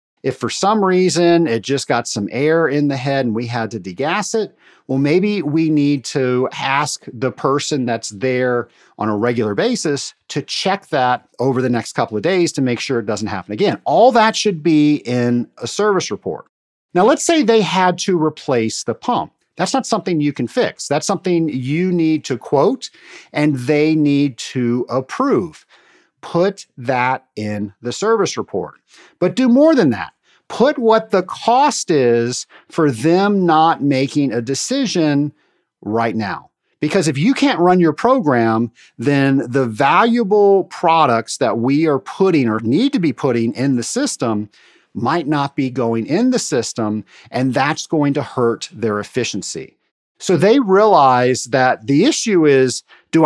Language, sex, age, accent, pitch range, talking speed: English, male, 50-69, American, 125-180 Hz, 170 wpm